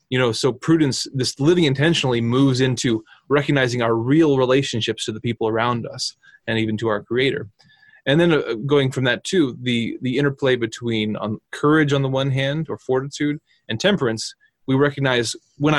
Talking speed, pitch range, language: 170 wpm, 115-140 Hz, English